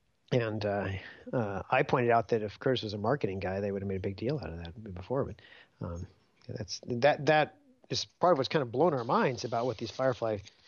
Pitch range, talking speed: 100-130 Hz, 230 wpm